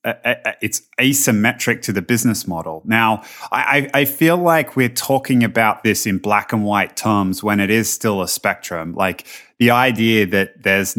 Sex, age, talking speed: male, 20-39, 175 wpm